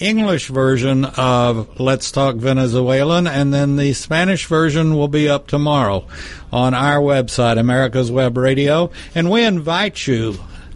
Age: 60-79